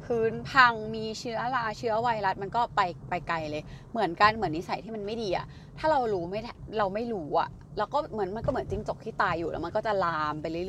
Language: Thai